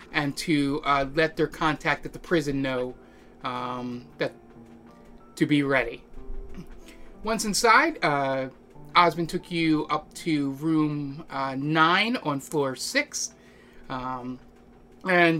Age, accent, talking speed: 30-49, American, 115 wpm